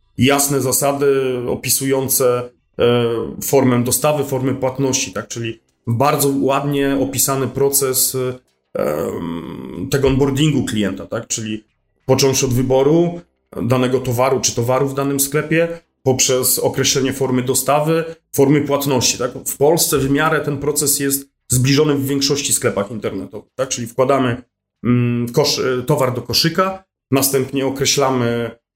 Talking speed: 115 wpm